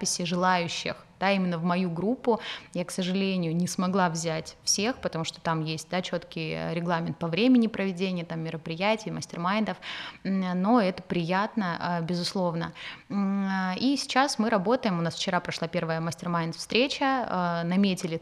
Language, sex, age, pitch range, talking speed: Russian, female, 20-39, 170-215 Hz, 140 wpm